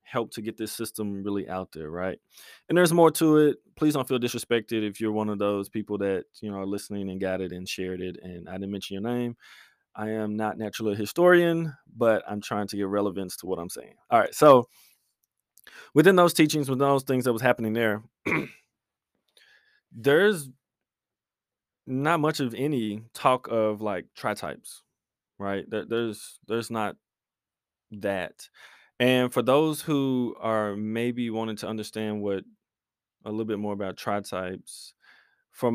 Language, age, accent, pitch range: English, 20-39, American, 100-130 Hz